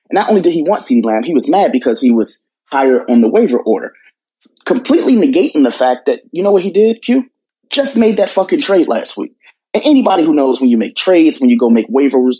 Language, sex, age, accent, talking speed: English, male, 30-49, American, 235 wpm